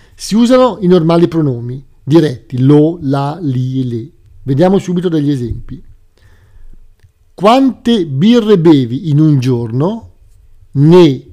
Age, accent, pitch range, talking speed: 50-69, native, 115-180 Hz, 110 wpm